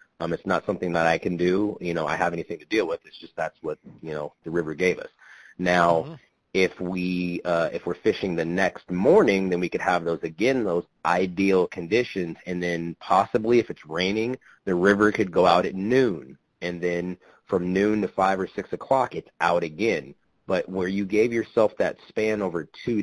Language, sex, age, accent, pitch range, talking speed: English, male, 30-49, American, 85-95 Hz, 205 wpm